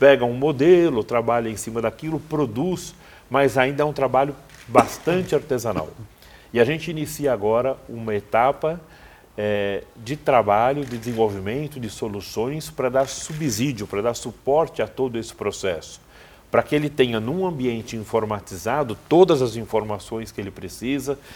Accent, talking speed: Brazilian, 145 wpm